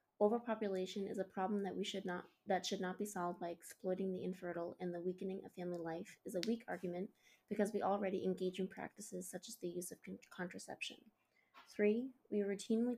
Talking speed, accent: 200 wpm, American